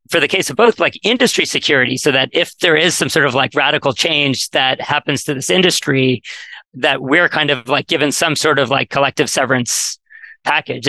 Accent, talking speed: American, 205 wpm